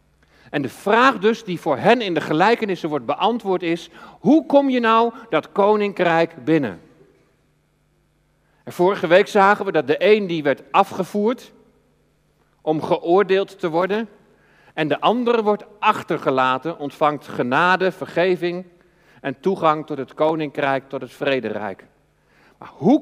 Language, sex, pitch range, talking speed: Dutch, male, 155-225 Hz, 140 wpm